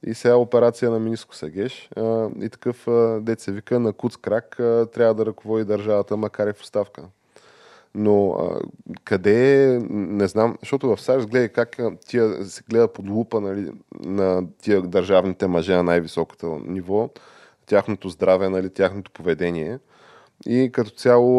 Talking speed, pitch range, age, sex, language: 145 wpm, 95-115 Hz, 20-39, male, Bulgarian